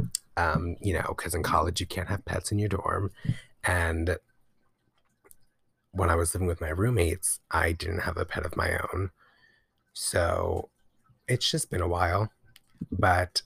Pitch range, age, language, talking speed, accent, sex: 90-105 Hz, 30-49, English, 160 wpm, American, male